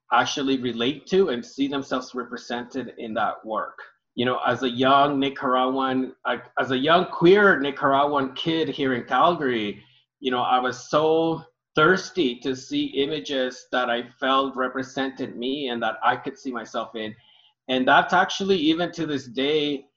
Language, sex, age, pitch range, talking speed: English, male, 30-49, 125-150 Hz, 160 wpm